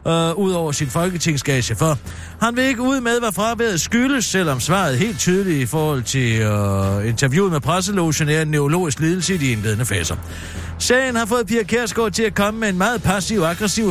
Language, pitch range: Danish, 125-200 Hz